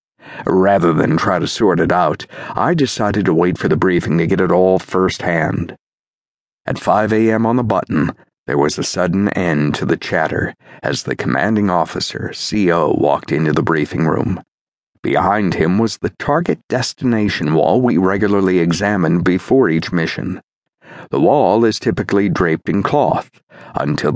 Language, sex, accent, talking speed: English, male, American, 160 wpm